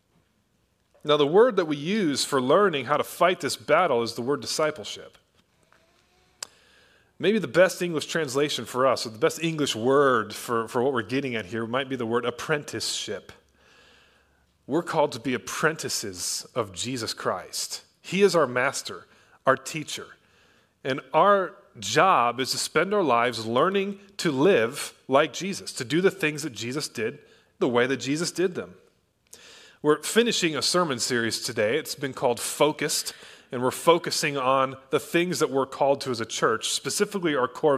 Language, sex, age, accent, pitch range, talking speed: English, male, 30-49, American, 125-175 Hz, 170 wpm